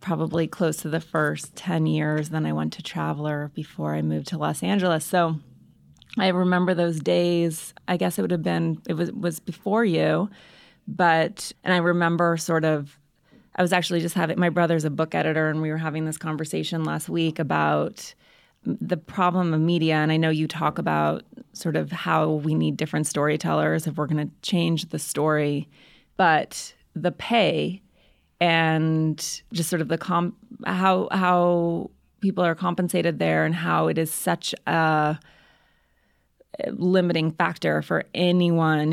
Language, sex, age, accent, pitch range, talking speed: English, female, 30-49, American, 150-175 Hz, 165 wpm